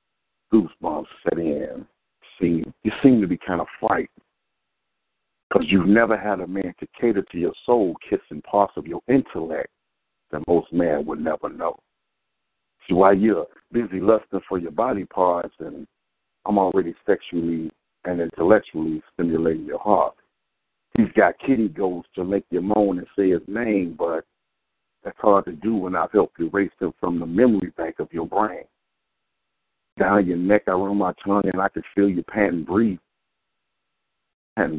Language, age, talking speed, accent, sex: English, 60-79, 160 wpm, American, male